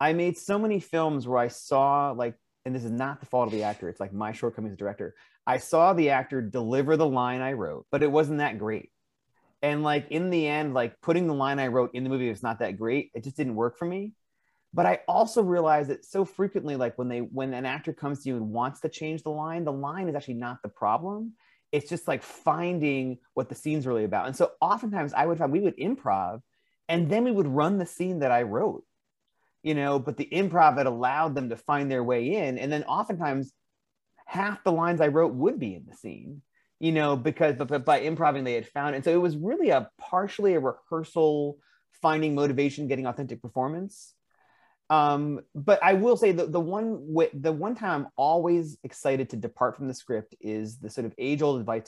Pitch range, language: 125-165 Hz, English